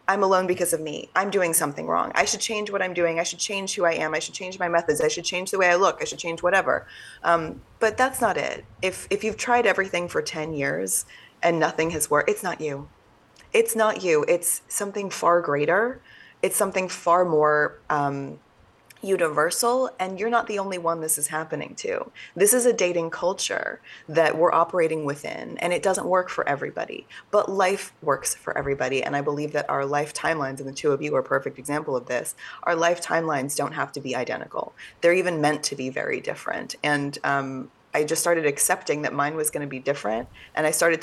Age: 20-39